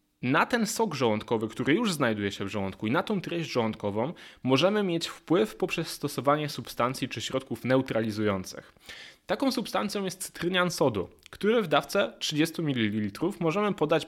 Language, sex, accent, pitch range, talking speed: Polish, male, native, 120-175 Hz, 155 wpm